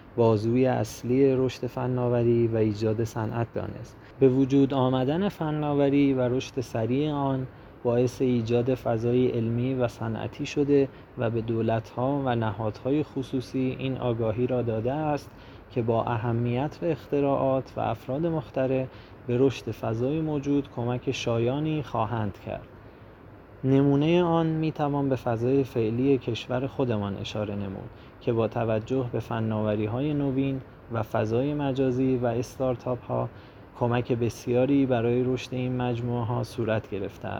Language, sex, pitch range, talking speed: Persian, male, 115-135 Hz, 135 wpm